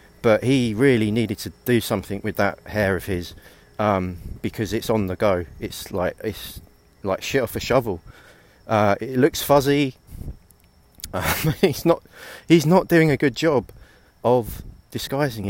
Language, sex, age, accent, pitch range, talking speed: English, male, 30-49, British, 90-110 Hz, 155 wpm